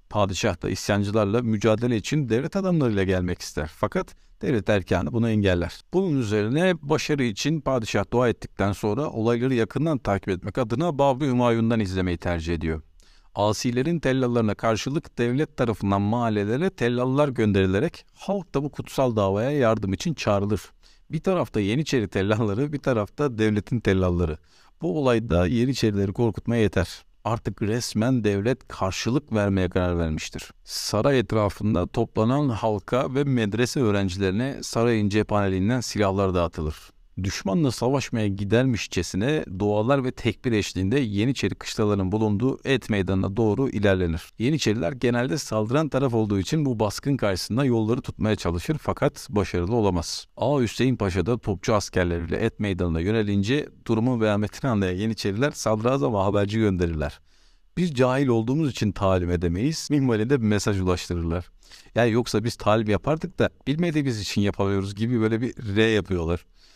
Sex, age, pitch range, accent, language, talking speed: male, 50-69, 100-130 Hz, native, Turkish, 135 wpm